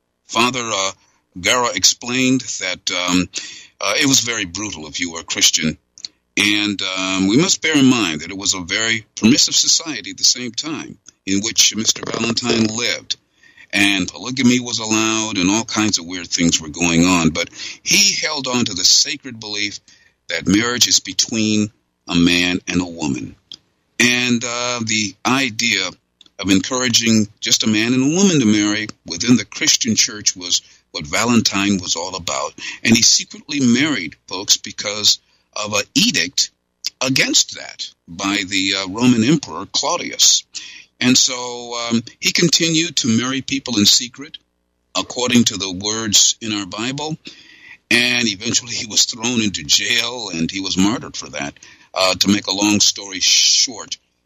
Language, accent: English, American